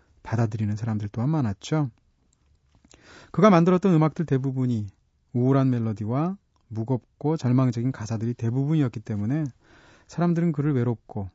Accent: native